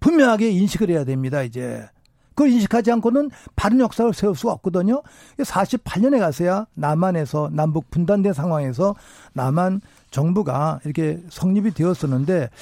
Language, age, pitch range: Korean, 50-69, 155-215 Hz